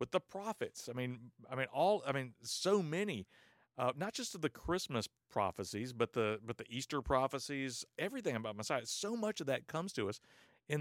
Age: 50-69